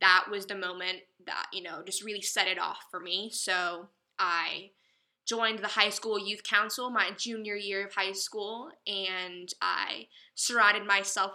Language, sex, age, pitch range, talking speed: English, female, 10-29, 185-210 Hz, 170 wpm